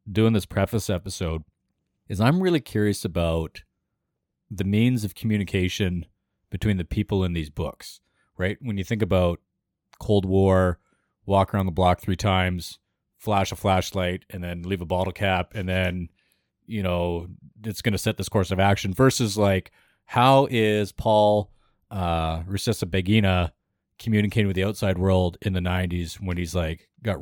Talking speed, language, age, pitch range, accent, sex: 160 wpm, English, 30-49, 90-115 Hz, American, male